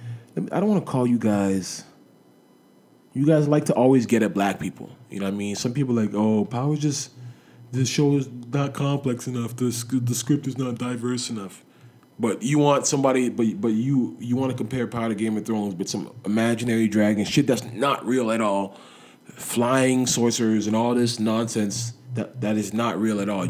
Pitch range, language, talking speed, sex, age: 100-130 Hz, English, 205 wpm, male, 20-39